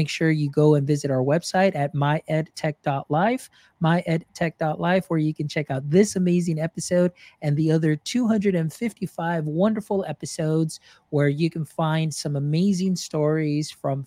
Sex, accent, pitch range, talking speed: male, American, 150-185 Hz, 140 wpm